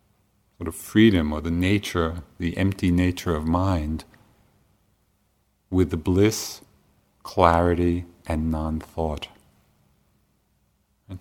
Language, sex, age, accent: English, male, 50-69, American